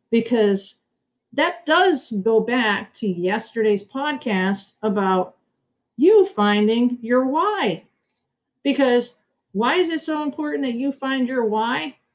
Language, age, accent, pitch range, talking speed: English, 50-69, American, 200-255 Hz, 120 wpm